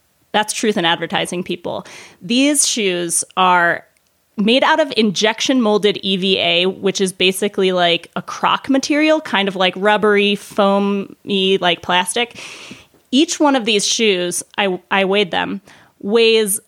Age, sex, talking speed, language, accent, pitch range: 20-39, female, 135 wpm, English, American, 190-245 Hz